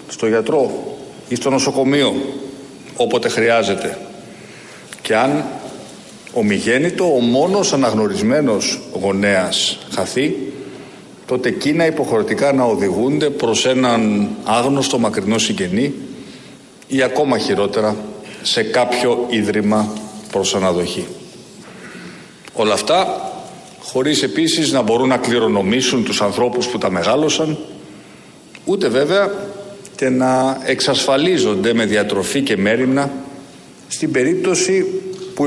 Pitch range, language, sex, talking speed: 120-155 Hz, Greek, male, 100 wpm